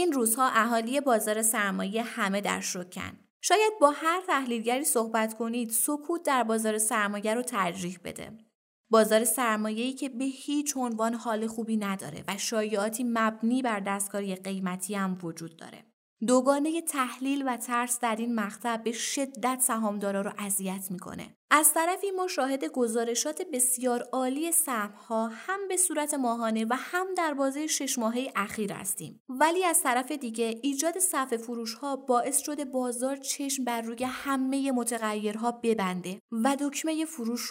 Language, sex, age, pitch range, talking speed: Persian, female, 20-39, 215-275 Hz, 145 wpm